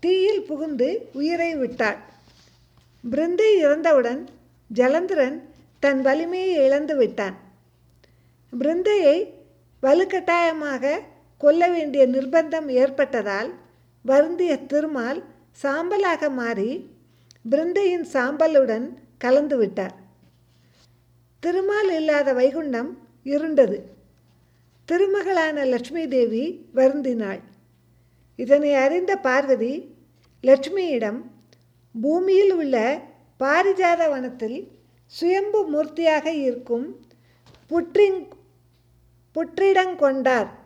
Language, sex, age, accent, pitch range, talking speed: Tamil, female, 50-69, native, 235-335 Hz, 65 wpm